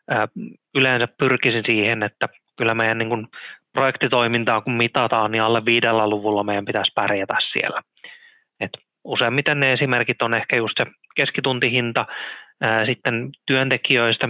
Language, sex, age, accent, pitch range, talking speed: Finnish, male, 20-39, native, 110-125 Hz, 115 wpm